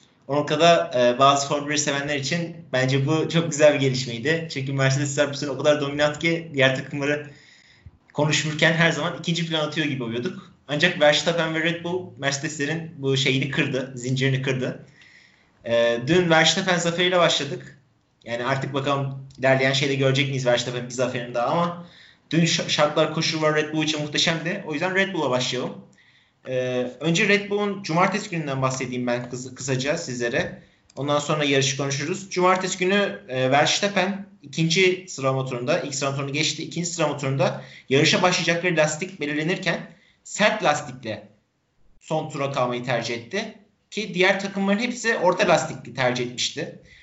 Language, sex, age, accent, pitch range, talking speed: Turkish, male, 30-49, native, 135-170 Hz, 145 wpm